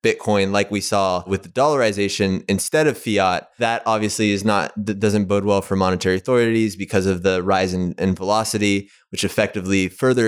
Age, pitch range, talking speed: 20-39, 95-115 Hz, 180 wpm